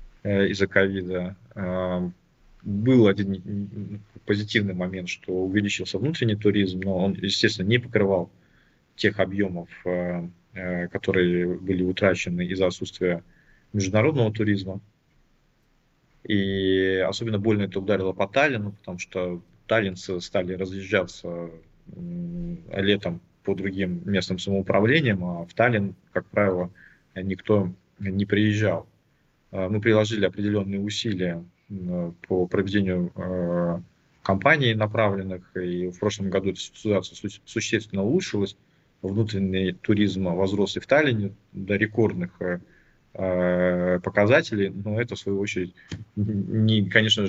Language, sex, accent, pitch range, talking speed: Russian, male, native, 90-105 Hz, 100 wpm